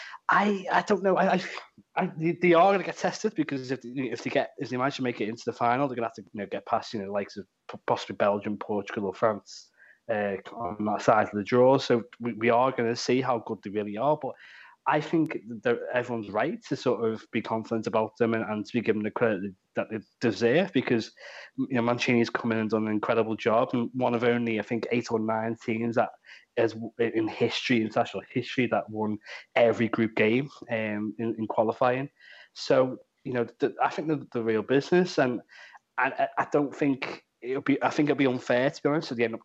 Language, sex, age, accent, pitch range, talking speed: English, male, 20-39, British, 115-130 Hz, 235 wpm